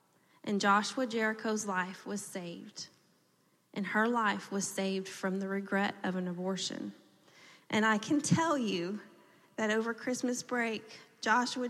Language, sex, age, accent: English, female, 30-49, American